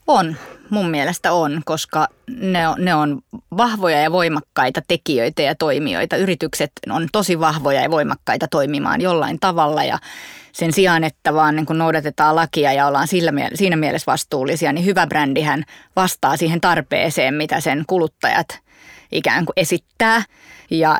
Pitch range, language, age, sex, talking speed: 155-180 Hz, Finnish, 20-39, female, 140 wpm